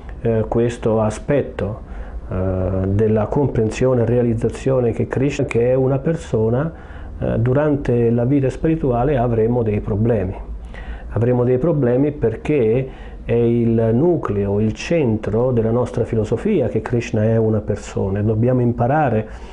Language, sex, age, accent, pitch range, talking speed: Italian, male, 40-59, native, 110-125 Hz, 120 wpm